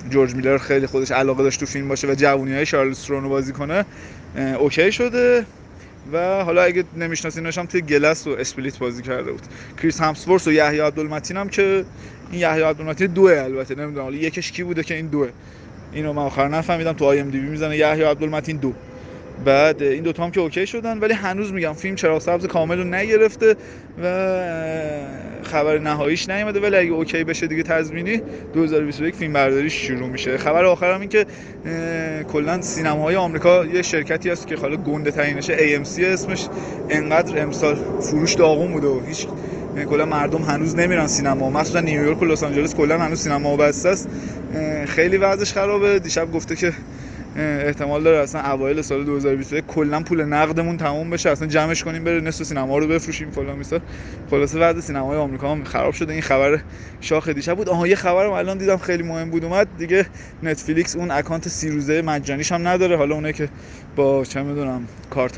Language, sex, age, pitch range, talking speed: Persian, male, 20-39, 140-170 Hz, 180 wpm